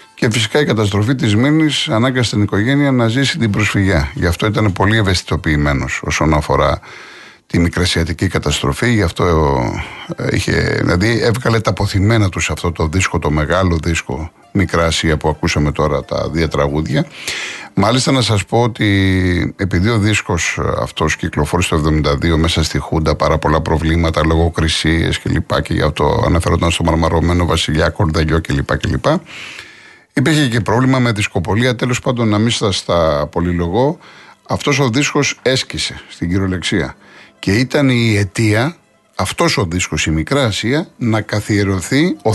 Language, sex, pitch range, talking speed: Greek, male, 85-125 Hz, 145 wpm